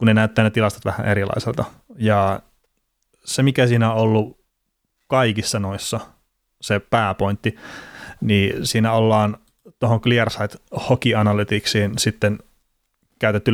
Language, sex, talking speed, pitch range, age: Finnish, male, 105 wpm, 105-120 Hz, 30-49